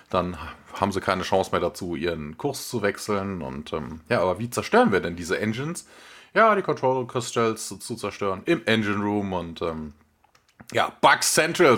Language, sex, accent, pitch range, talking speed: German, male, German, 100-130 Hz, 185 wpm